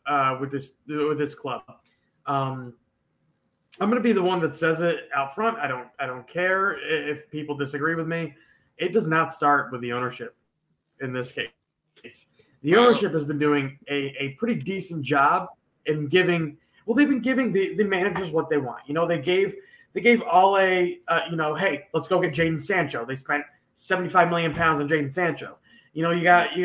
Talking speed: 205 wpm